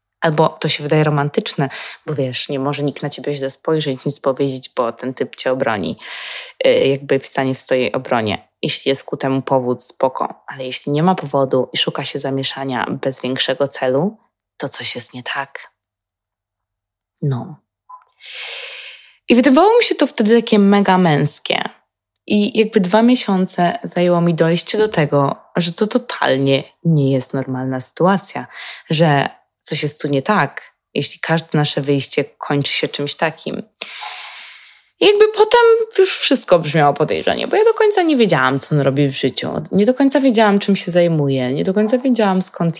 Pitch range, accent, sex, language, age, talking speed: 135-210 Hz, native, female, Polish, 20-39, 170 wpm